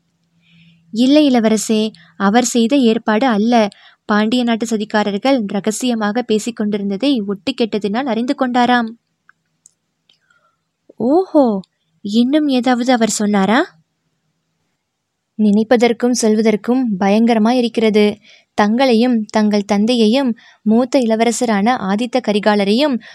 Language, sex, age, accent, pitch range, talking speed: Tamil, female, 20-39, native, 210-245 Hz, 80 wpm